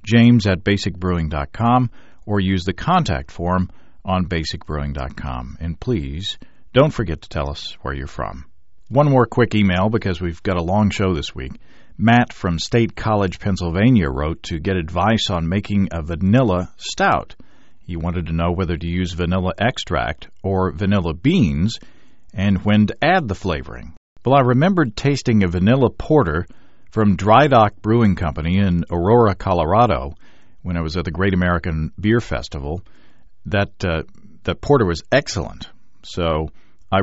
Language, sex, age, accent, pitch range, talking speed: English, male, 50-69, American, 85-110 Hz, 155 wpm